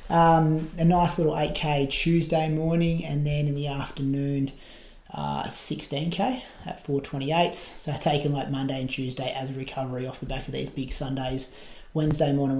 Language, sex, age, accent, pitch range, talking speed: English, male, 30-49, Australian, 135-155 Hz, 165 wpm